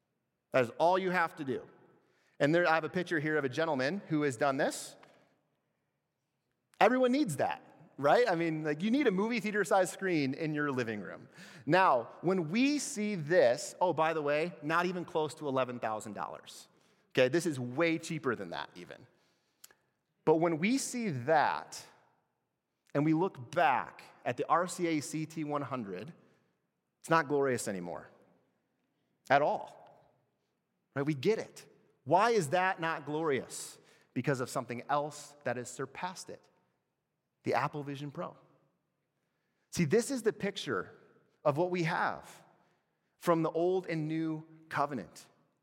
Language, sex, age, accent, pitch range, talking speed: English, male, 30-49, American, 145-185 Hz, 150 wpm